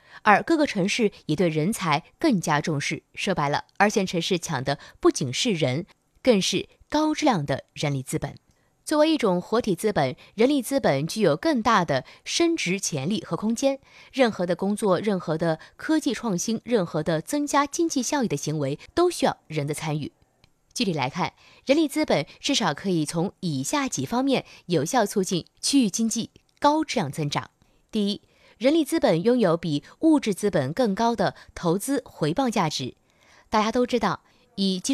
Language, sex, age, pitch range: Chinese, female, 20-39, 165-260 Hz